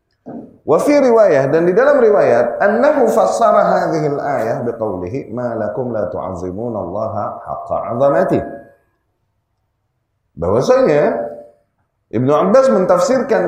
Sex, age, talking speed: male, 30-49, 50 wpm